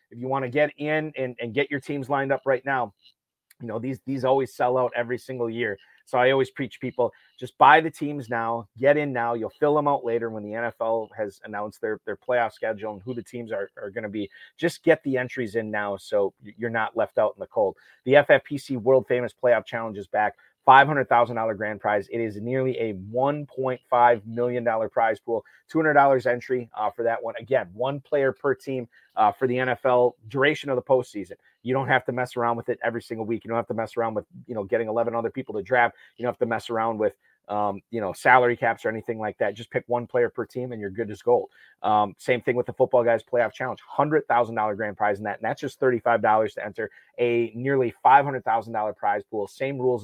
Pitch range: 110-130 Hz